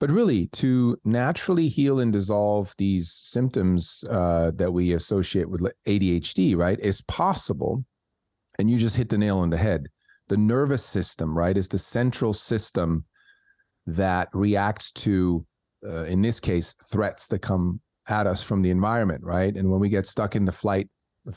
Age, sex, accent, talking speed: 30-49, male, American, 170 wpm